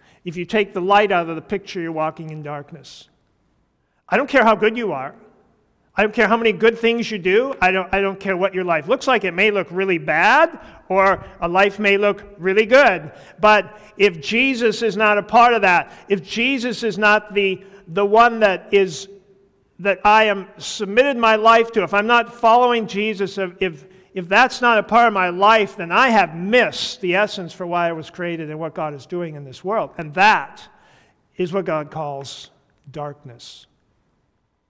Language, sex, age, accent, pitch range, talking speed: English, male, 50-69, American, 170-215 Hz, 200 wpm